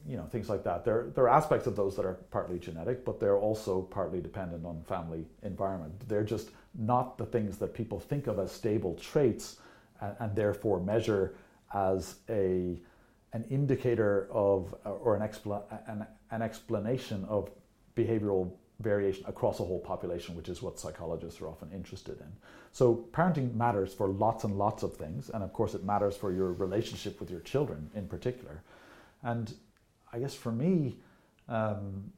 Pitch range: 95-120 Hz